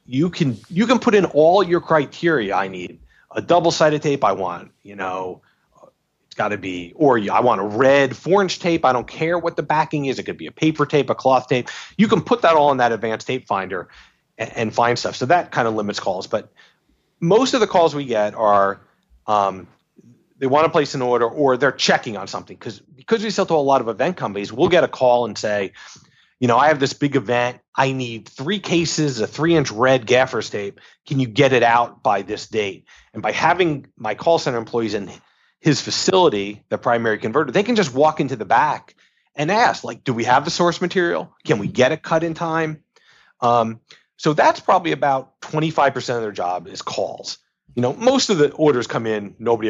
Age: 40-59